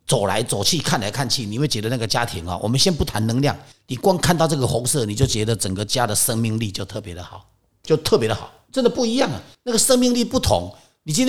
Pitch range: 110-180 Hz